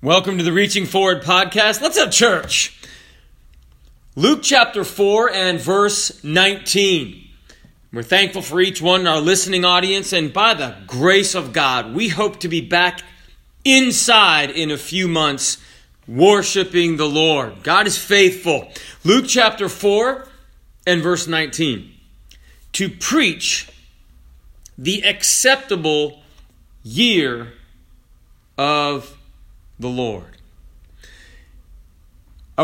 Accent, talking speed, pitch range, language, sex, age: American, 110 wpm, 130-195 Hz, English, male, 40-59